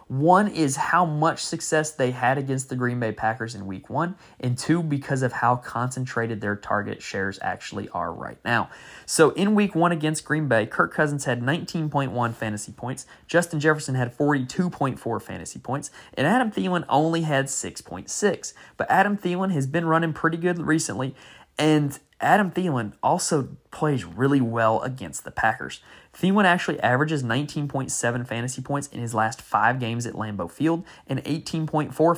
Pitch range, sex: 120-160 Hz, male